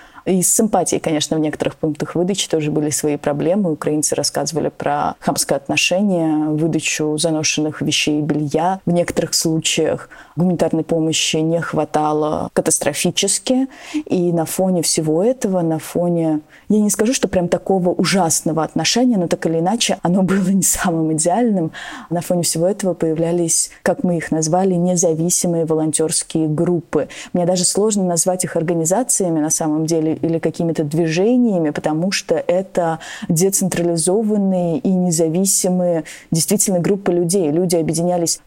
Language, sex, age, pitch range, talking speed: Russian, female, 20-39, 160-185 Hz, 140 wpm